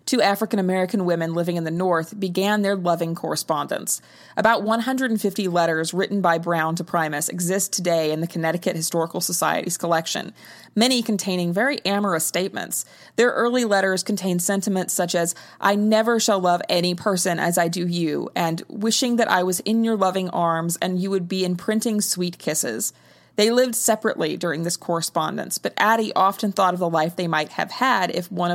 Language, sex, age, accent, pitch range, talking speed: English, female, 20-39, American, 175-210 Hz, 175 wpm